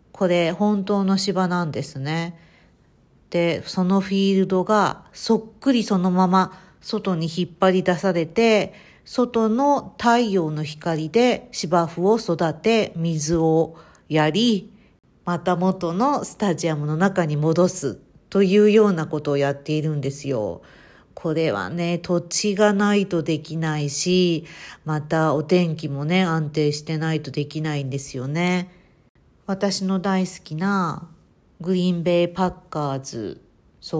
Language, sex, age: Japanese, female, 50-69